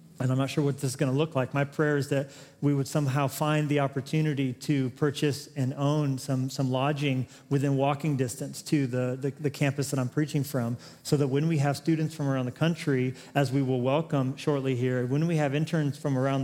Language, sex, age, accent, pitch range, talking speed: English, male, 40-59, American, 135-155 Hz, 225 wpm